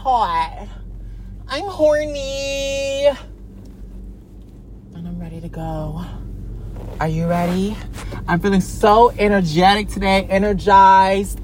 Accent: American